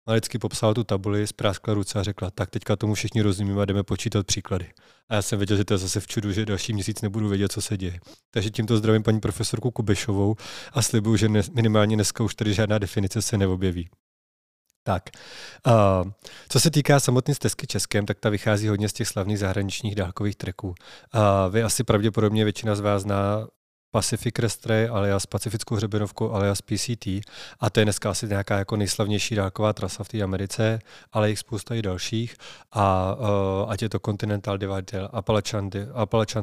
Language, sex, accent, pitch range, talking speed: Czech, male, native, 100-115 Hz, 185 wpm